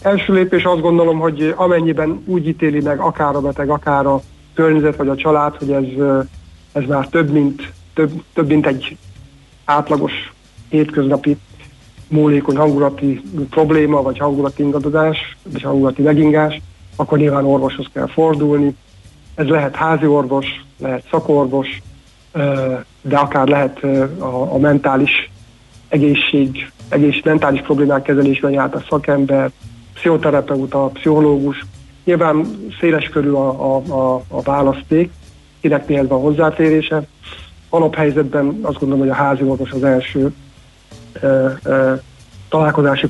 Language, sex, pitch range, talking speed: Hungarian, male, 135-150 Hz, 125 wpm